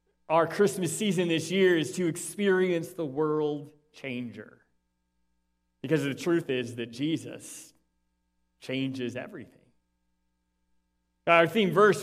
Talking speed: 110 wpm